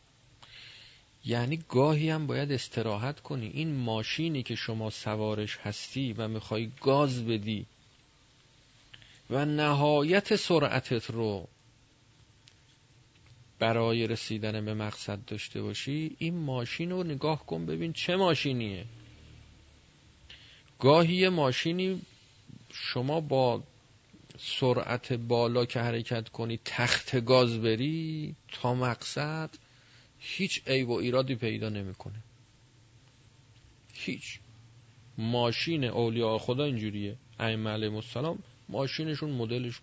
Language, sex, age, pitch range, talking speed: Persian, male, 40-59, 115-140 Hz, 95 wpm